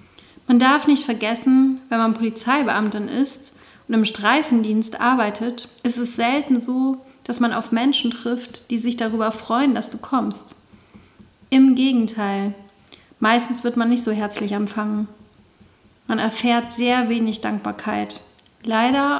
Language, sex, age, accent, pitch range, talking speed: German, female, 40-59, German, 215-255 Hz, 135 wpm